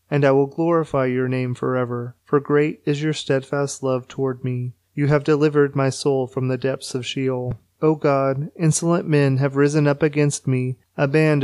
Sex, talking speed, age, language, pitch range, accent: male, 195 wpm, 30-49, English, 130-155 Hz, American